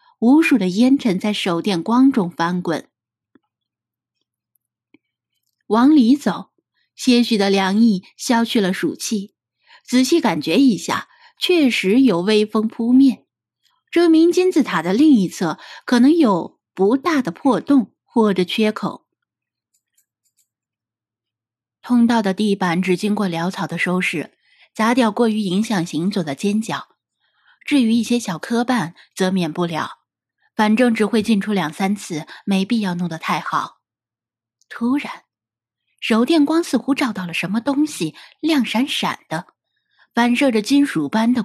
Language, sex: Chinese, female